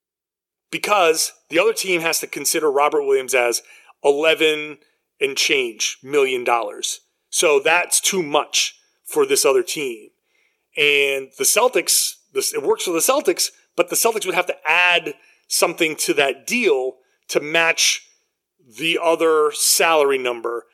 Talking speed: 140 wpm